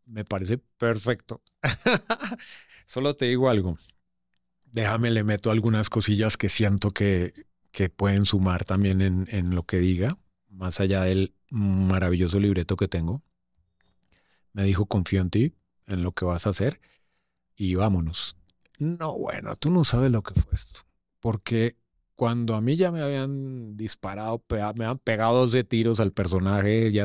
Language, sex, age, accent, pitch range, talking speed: Spanish, male, 30-49, Mexican, 90-115 Hz, 155 wpm